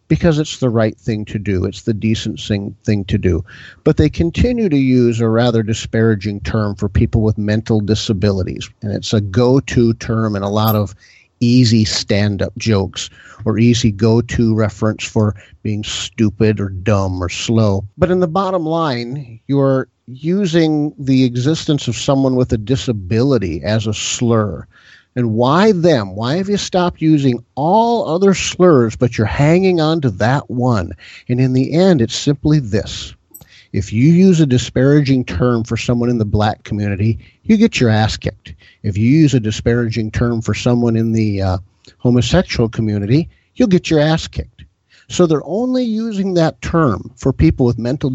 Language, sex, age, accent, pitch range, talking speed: English, male, 50-69, American, 110-140 Hz, 170 wpm